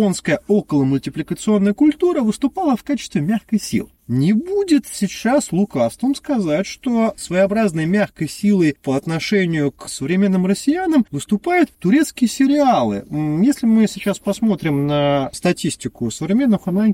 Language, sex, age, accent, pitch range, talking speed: Russian, male, 30-49, native, 150-235 Hz, 120 wpm